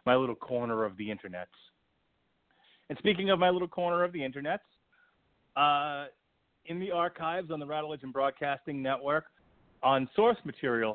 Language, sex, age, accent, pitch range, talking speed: English, male, 40-59, American, 125-170 Hz, 150 wpm